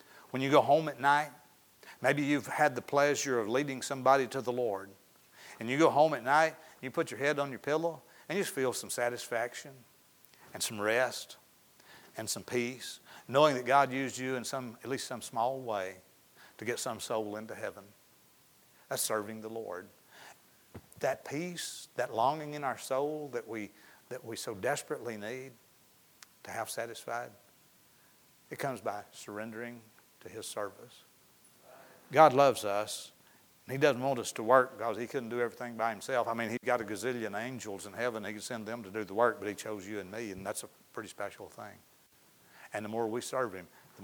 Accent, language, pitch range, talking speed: American, English, 110-140 Hz, 190 wpm